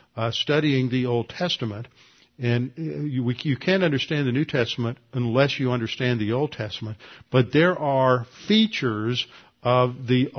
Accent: American